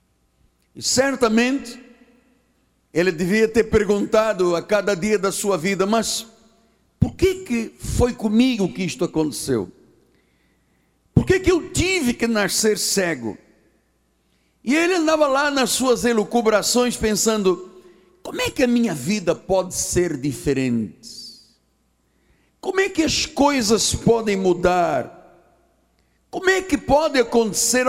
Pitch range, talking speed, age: 175-230 Hz, 125 wpm, 60-79